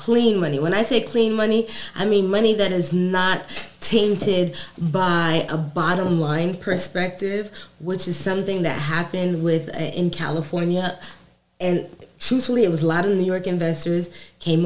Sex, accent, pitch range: female, American, 170-205 Hz